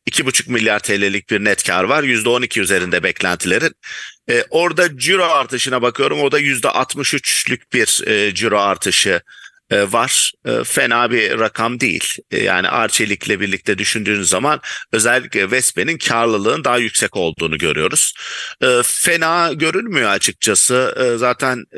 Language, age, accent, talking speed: English, 50-69, Turkish, 130 wpm